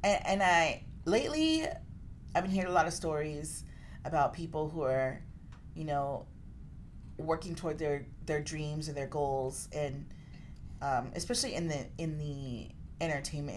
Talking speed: 140 wpm